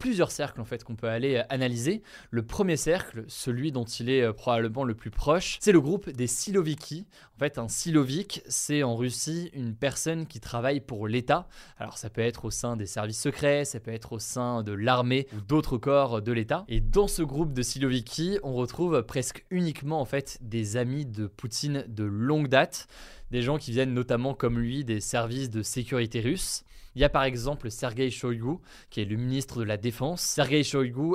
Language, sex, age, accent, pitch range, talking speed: French, male, 20-39, French, 115-145 Hz, 200 wpm